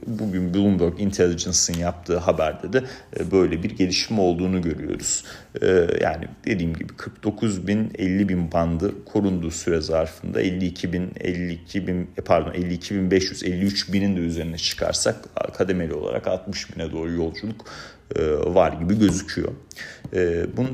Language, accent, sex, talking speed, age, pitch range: Turkish, native, male, 105 wpm, 40-59, 90-105 Hz